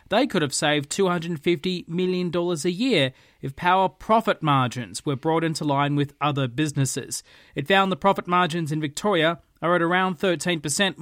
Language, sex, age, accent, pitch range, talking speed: English, male, 30-49, Australian, 135-175 Hz, 165 wpm